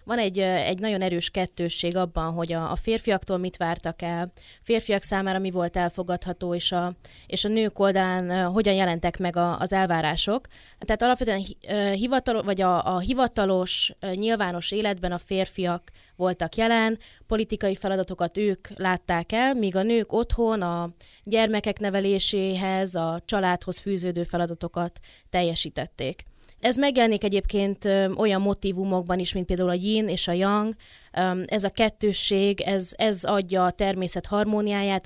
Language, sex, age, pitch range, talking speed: Hungarian, female, 20-39, 180-210 Hz, 140 wpm